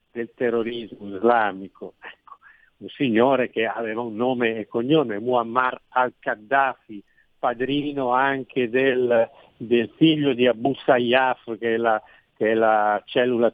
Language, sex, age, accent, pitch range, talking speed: Italian, male, 60-79, native, 115-140 Hz, 130 wpm